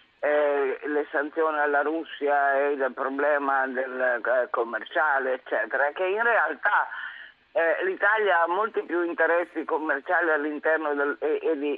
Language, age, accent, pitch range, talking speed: Italian, 50-69, native, 140-170 Hz, 140 wpm